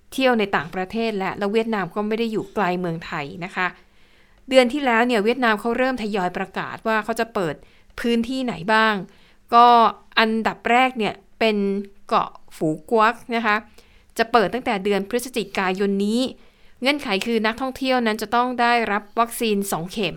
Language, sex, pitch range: Thai, female, 195-230 Hz